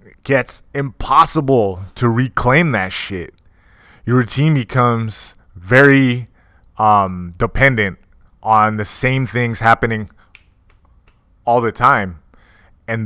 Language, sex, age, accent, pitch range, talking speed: English, male, 20-39, American, 95-135 Hz, 95 wpm